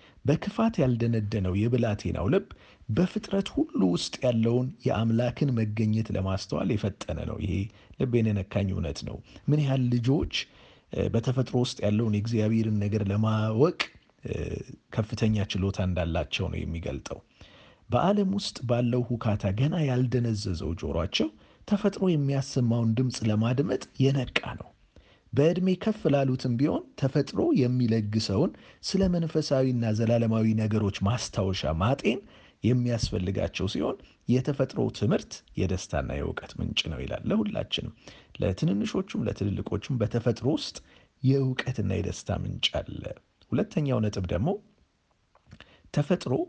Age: 40-59